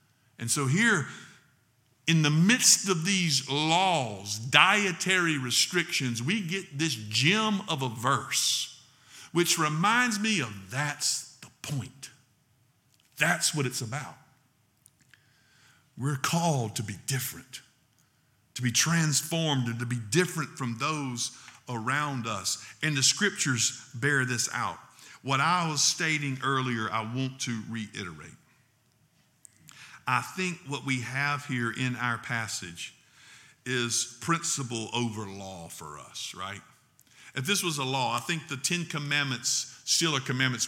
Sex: male